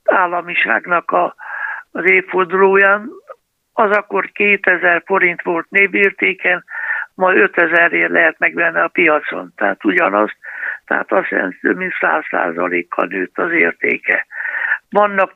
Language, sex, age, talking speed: Hungarian, male, 60-79, 110 wpm